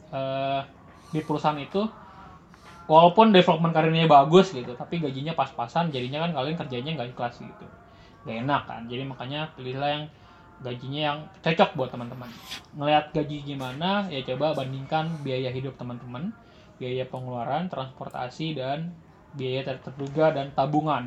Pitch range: 130-155 Hz